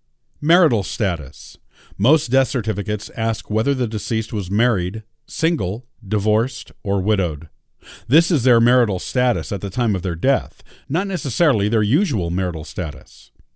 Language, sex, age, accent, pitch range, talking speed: English, male, 50-69, American, 95-140 Hz, 140 wpm